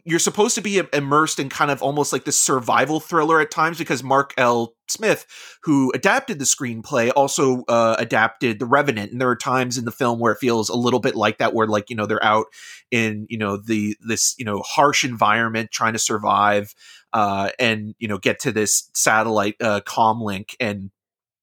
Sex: male